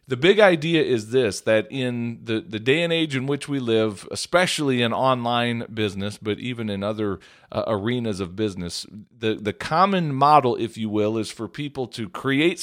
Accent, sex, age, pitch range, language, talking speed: American, male, 40-59, 110-135 Hz, English, 190 wpm